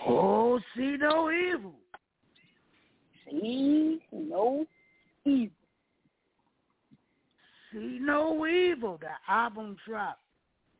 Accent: American